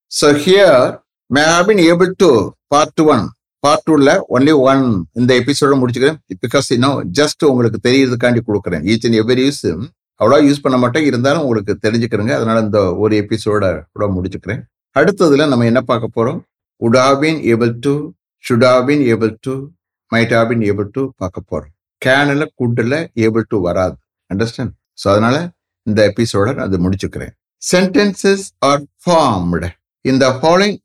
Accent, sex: Indian, male